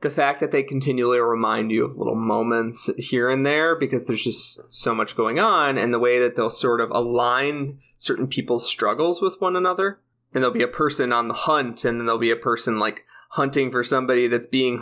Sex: male